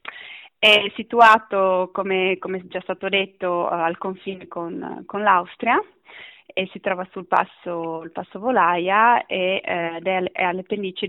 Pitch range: 175-200 Hz